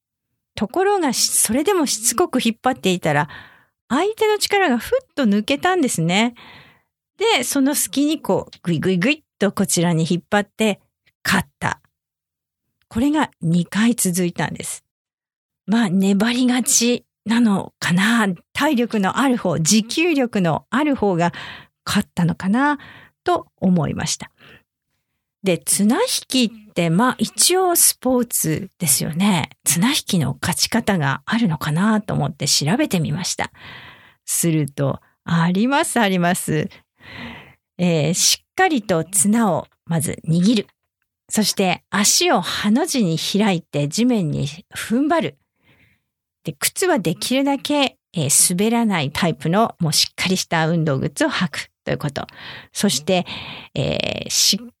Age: 50-69